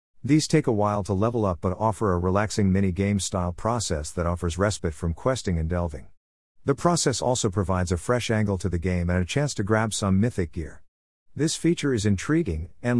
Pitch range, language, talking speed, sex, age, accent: 85-115 Hz, English, 205 wpm, male, 50-69, American